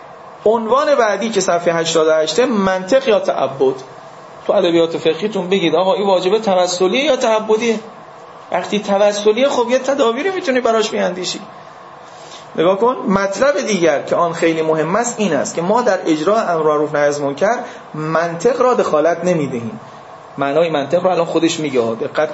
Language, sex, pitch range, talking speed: Persian, male, 165-225 Hz, 145 wpm